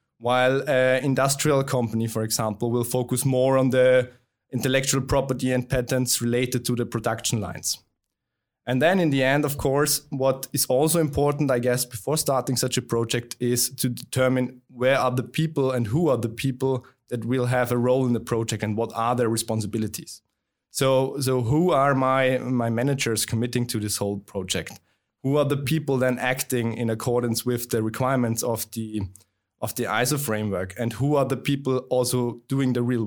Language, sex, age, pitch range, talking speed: English, male, 20-39, 120-135 Hz, 185 wpm